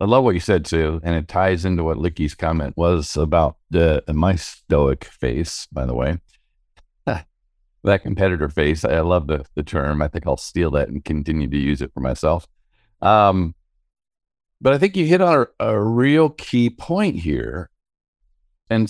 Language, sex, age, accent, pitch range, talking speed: English, male, 50-69, American, 80-110 Hz, 180 wpm